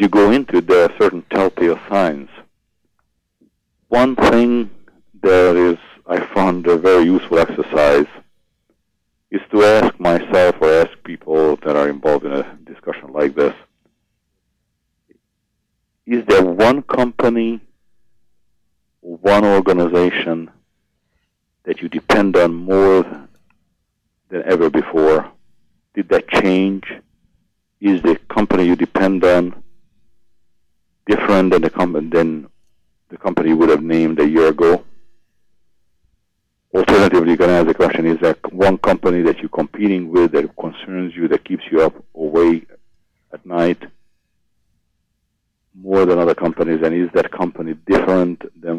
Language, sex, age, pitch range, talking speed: English, male, 50-69, 85-100 Hz, 130 wpm